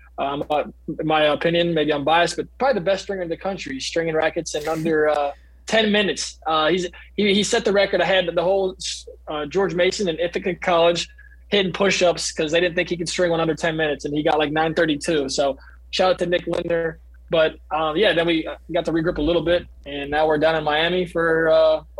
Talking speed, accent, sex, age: 225 wpm, American, male, 20-39